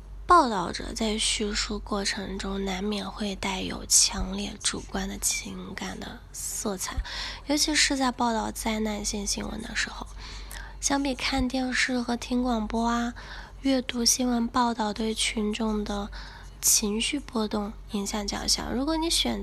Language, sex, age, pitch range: Chinese, female, 10-29, 210-255 Hz